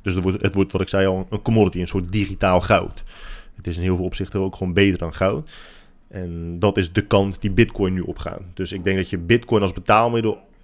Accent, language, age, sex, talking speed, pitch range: Dutch, Dutch, 20-39, male, 235 wpm, 95-105 Hz